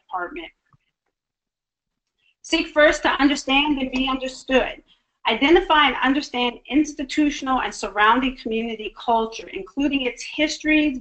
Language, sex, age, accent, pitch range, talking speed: English, female, 40-59, American, 210-260 Hz, 105 wpm